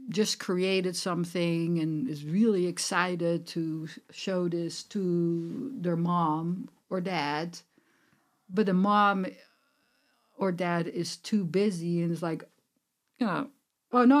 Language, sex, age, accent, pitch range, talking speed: English, female, 60-79, Dutch, 170-205 Hz, 120 wpm